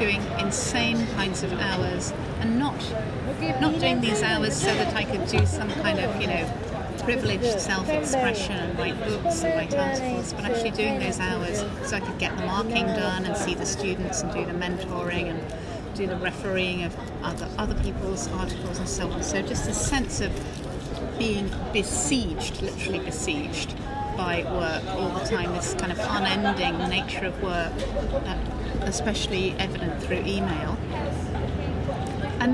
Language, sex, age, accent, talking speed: English, female, 40-59, British, 160 wpm